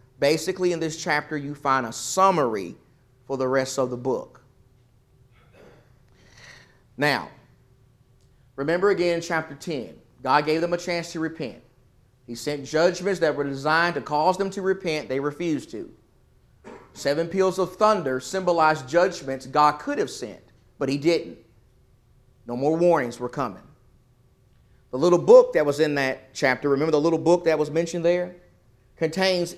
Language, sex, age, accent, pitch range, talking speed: English, male, 30-49, American, 125-170 Hz, 155 wpm